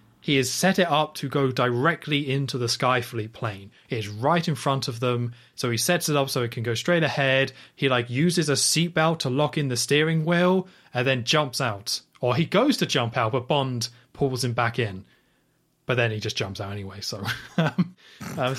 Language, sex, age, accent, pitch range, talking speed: English, male, 20-39, British, 120-150 Hz, 210 wpm